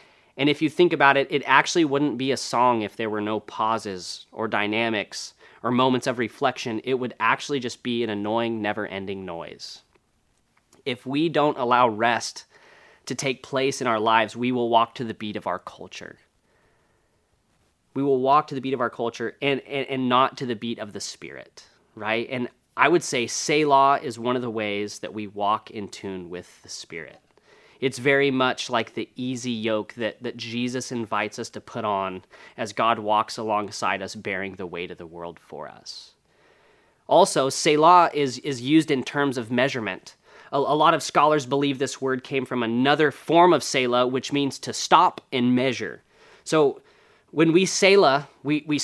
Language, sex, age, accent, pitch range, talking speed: English, male, 30-49, American, 115-145 Hz, 190 wpm